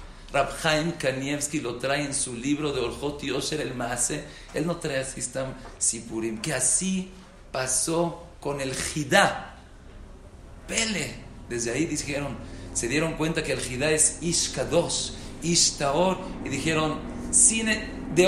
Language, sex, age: English, male, 50-69